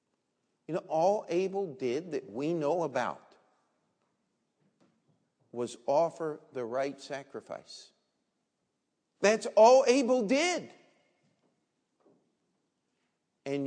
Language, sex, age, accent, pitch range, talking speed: English, male, 50-69, American, 145-200 Hz, 85 wpm